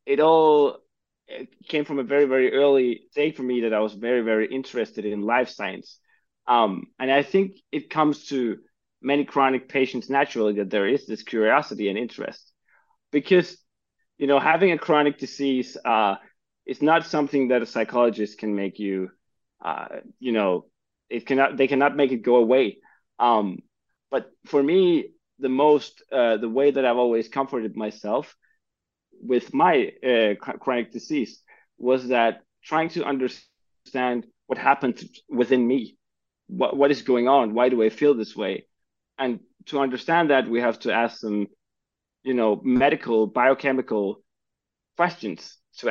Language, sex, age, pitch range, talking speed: English, male, 20-39, 115-145 Hz, 160 wpm